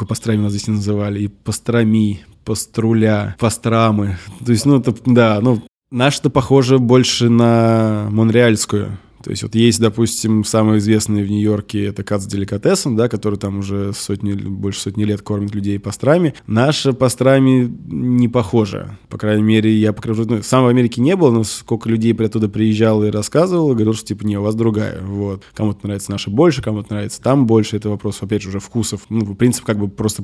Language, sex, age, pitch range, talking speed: Russian, male, 20-39, 105-120 Hz, 190 wpm